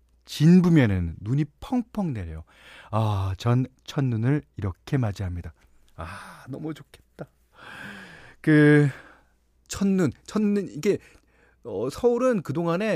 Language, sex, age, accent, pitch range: Korean, male, 30-49, native, 95-150 Hz